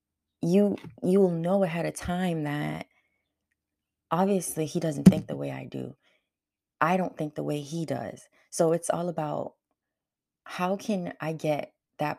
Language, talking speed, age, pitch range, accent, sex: English, 160 wpm, 20-39, 150-195 Hz, American, female